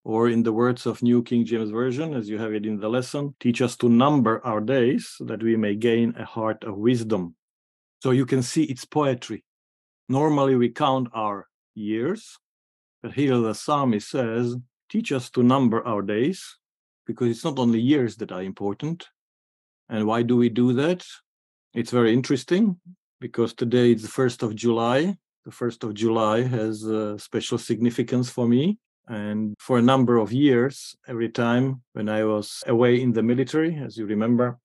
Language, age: English, 50-69